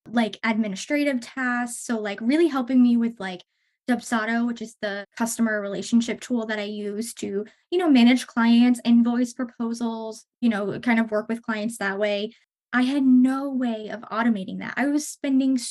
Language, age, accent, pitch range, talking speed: English, 10-29, American, 215-255 Hz, 175 wpm